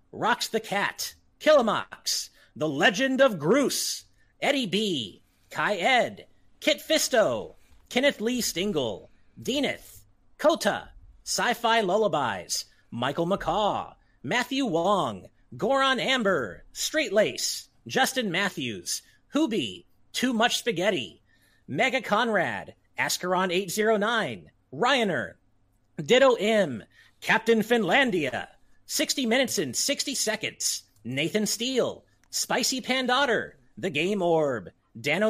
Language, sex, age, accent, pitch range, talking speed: English, male, 30-49, American, 195-265 Hz, 100 wpm